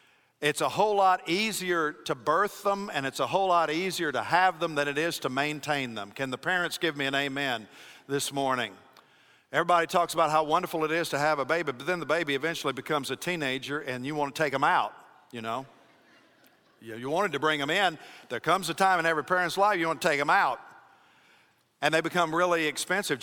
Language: English